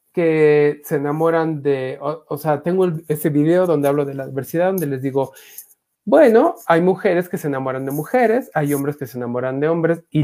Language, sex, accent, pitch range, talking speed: Spanish, male, Mexican, 140-205 Hz, 205 wpm